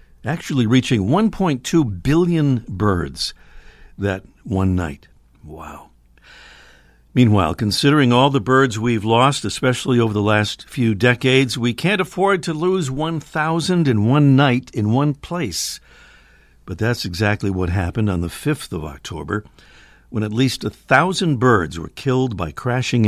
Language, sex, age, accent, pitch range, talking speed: English, male, 60-79, American, 95-130 Hz, 140 wpm